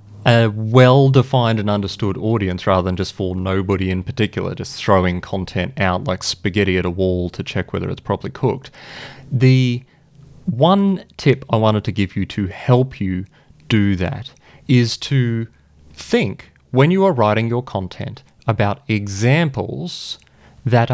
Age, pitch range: 30-49, 100-135 Hz